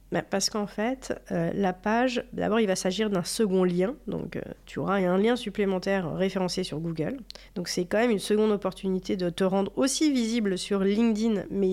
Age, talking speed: 40-59, 200 wpm